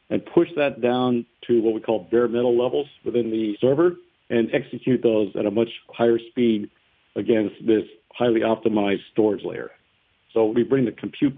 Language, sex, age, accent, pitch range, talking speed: English, male, 50-69, American, 115-135 Hz, 175 wpm